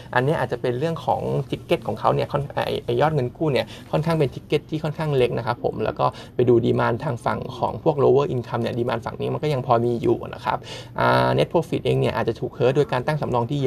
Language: Thai